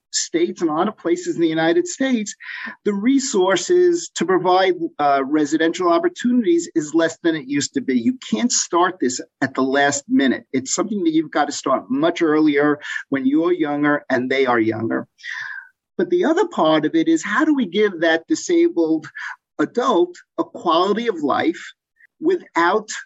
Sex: male